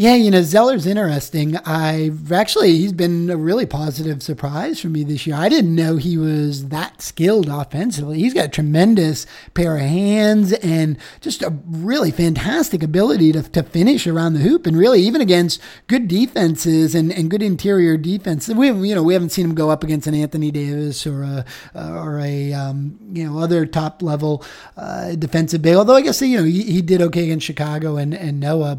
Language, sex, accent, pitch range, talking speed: English, male, American, 155-190 Hz, 195 wpm